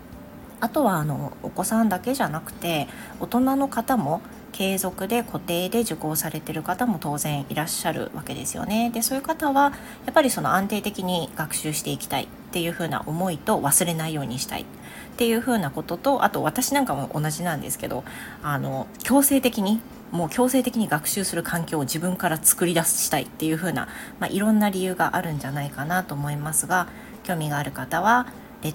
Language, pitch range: Japanese, 155-230 Hz